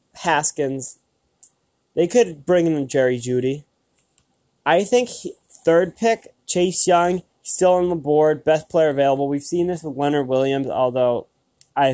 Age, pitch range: 20-39, 130-160 Hz